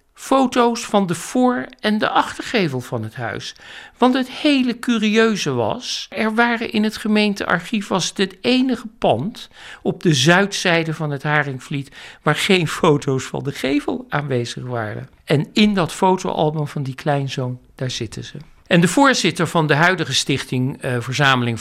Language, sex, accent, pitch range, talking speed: Dutch, male, Dutch, 130-185 Hz, 160 wpm